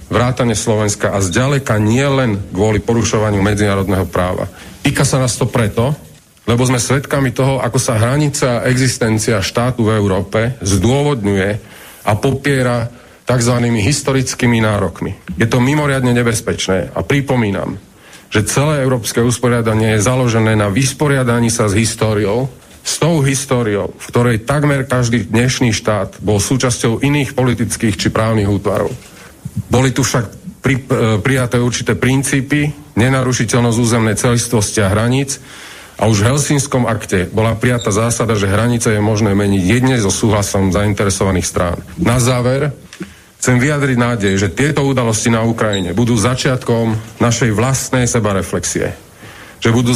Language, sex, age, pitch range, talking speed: Slovak, male, 40-59, 105-130 Hz, 135 wpm